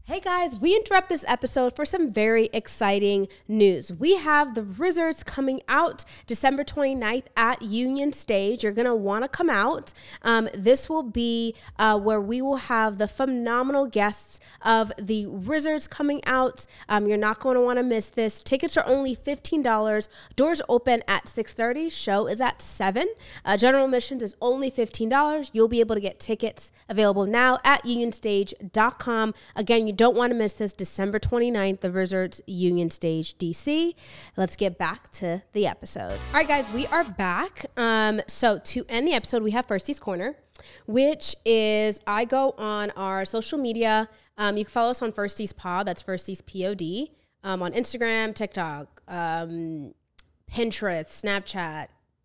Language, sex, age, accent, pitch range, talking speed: English, female, 20-39, American, 205-260 Hz, 170 wpm